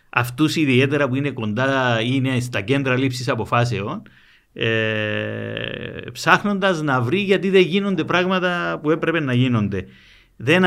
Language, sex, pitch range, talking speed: Greek, male, 115-155 Hz, 125 wpm